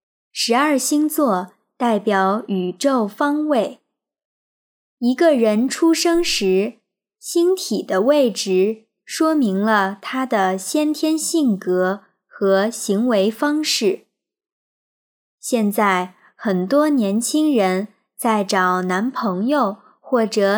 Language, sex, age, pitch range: Chinese, male, 20-39, 195-295 Hz